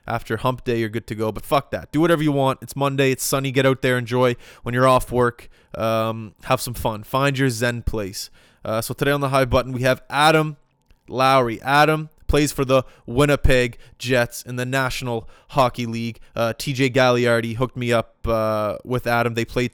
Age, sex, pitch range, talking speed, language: 20-39, male, 115-135 Hz, 205 wpm, English